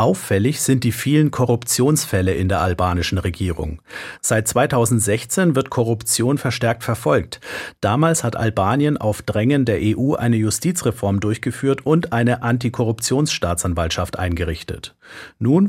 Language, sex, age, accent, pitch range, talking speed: German, male, 50-69, German, 100-125 Hz, 115 wpm